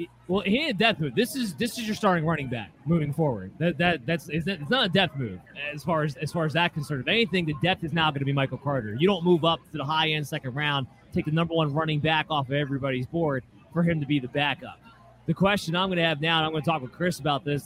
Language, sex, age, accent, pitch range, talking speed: English, male, 30-49, American, 150-195 Hz, 290 wpm